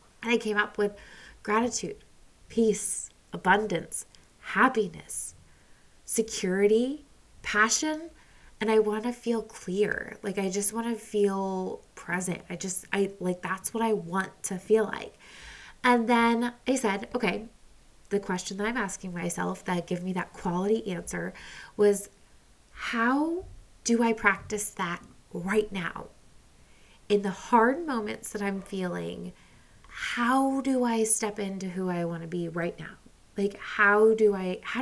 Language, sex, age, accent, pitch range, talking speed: English, female, 20-39, American, 180-230 Hz, 145 wpm